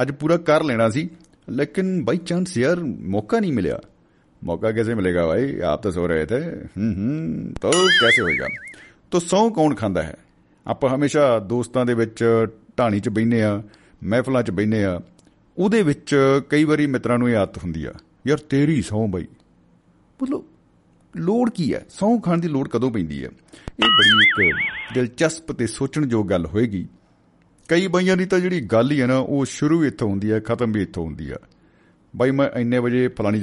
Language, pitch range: Punjabi, 110-150 Hz